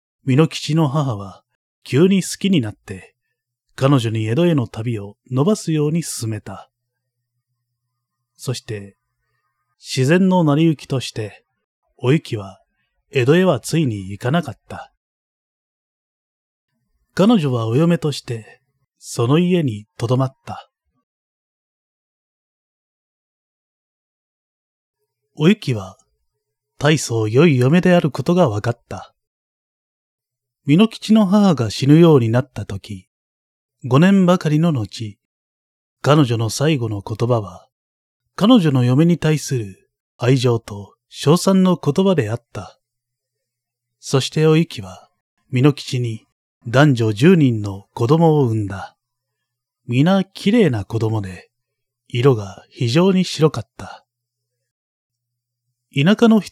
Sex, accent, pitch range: male, native, 115-155 Hz